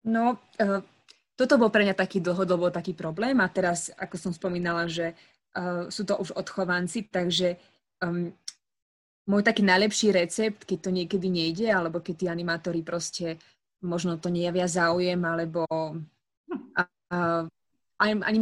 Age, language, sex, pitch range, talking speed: 20-39, Slovak, female, 175-205 Hz, 145 wpm